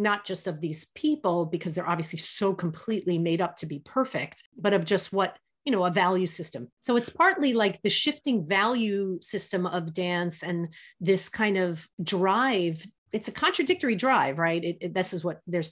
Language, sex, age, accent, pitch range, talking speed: English, female, 30-49, American, 170-205 Hz, 185 wpm